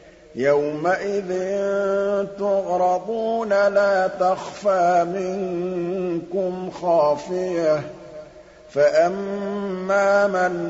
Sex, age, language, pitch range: male, 50-69, Arabic, 155-190 Hz